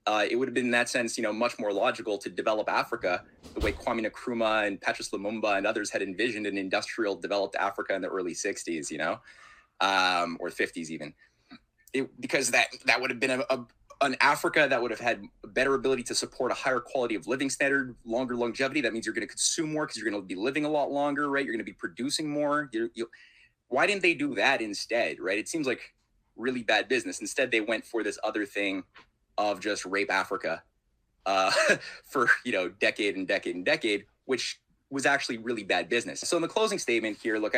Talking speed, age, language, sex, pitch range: 225 wpm, 30-49, English, male, 110-145 Hz